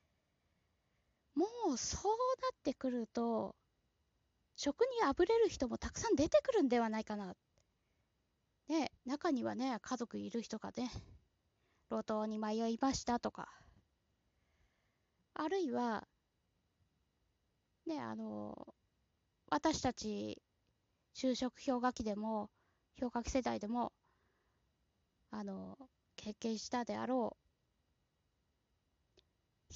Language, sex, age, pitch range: Japanese, female, 20-39, 220-300 Hz